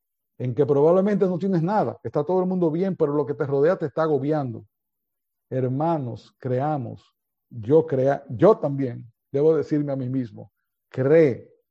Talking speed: 160 wpm